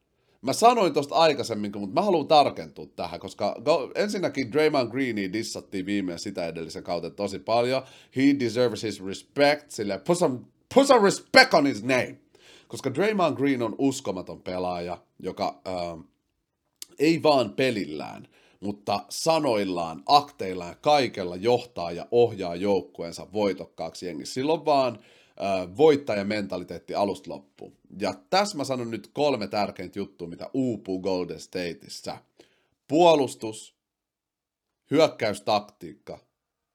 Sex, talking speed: male, 115 wpm